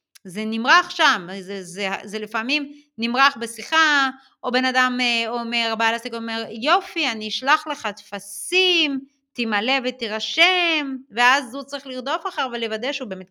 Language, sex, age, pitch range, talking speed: Hebrew, female, 30-49, 205-325 Hz, 150 wpm